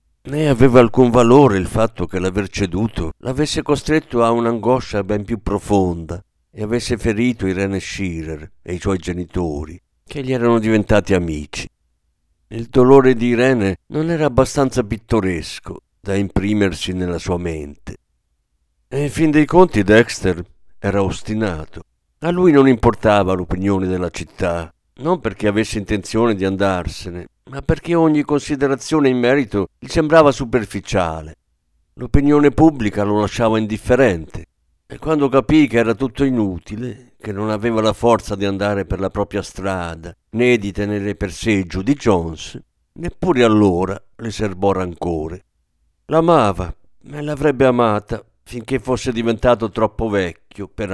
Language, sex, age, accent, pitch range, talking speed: Italian, male, 50-69, native, 90-125 Hz, 140 wpm